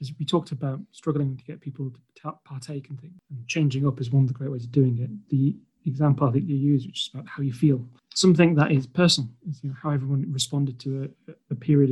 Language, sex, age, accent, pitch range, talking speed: English, male, 30-49, British, 130-150 Hz, 245 wpm